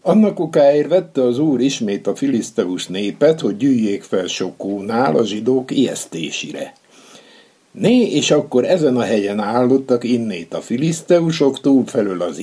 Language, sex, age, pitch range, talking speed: Hungarian, male, 60-79, 115-150 Hz, 130 wpm